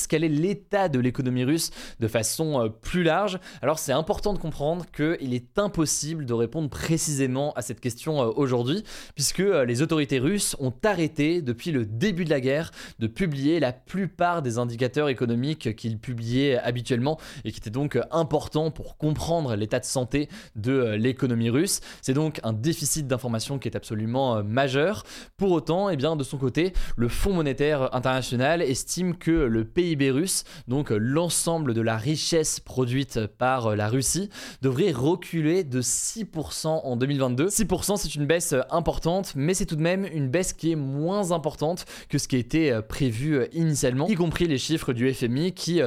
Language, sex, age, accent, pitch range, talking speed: French, male, 20-39, French, 125-165 Hz, 165 wpm